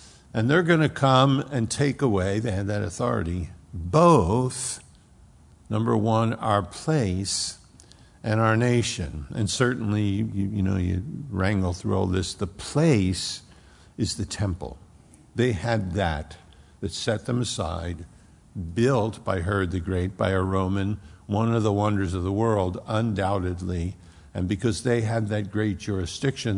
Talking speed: 145 wpm